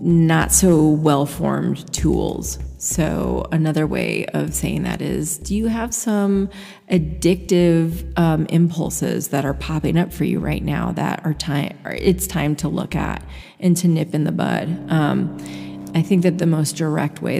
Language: English